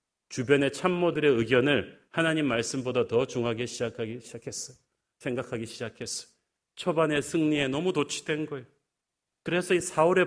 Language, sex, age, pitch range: Korean, male, 40-59, 120-165 Hz